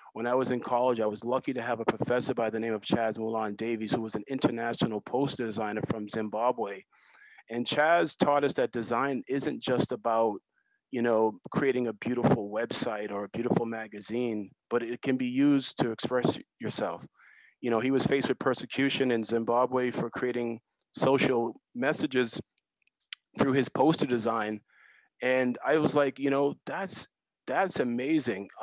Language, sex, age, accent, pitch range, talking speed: English, male, 30-49, American, 115-130 Hz, 170 wpm